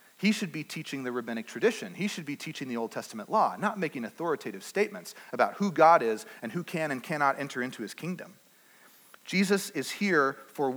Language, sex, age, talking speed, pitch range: English, male, 30-49, 200 wpm, 140-185 Hz